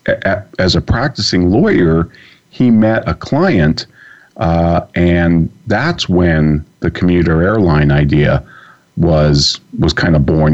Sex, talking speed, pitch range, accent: male, 120 wpm, 75-90 Hz, American